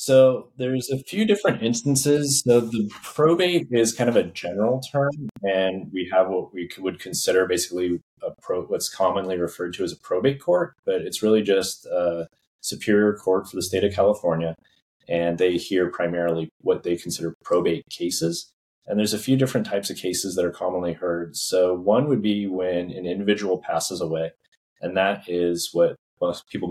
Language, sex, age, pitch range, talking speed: English, male, 30-49, 85-115 Hz, 175 wpm